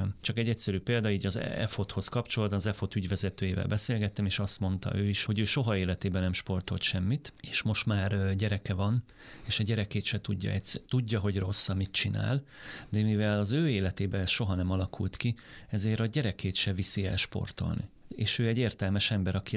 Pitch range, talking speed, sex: 95-115 Hz, 190 wpm, male